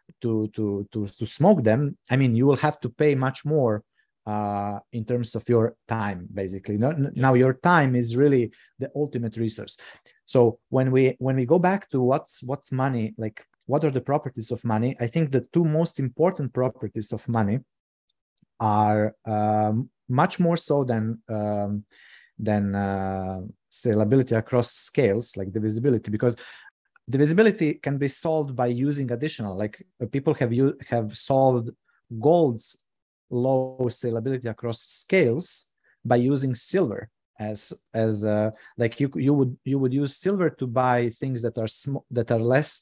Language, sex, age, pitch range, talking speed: English, male, 30-49, 110-140 Hz, 165 wpm